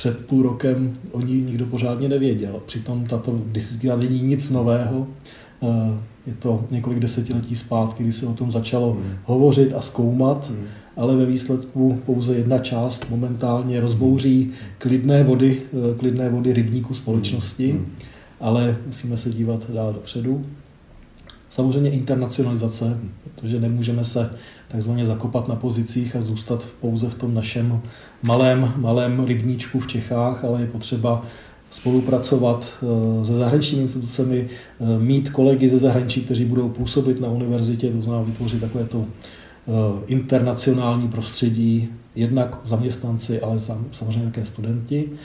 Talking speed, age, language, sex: 125 wpm, 40-59, Czech, male